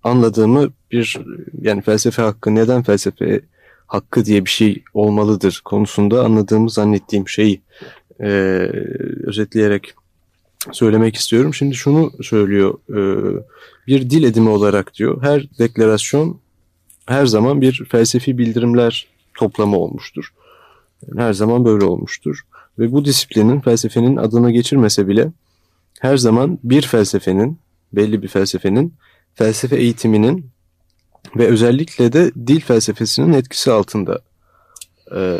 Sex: male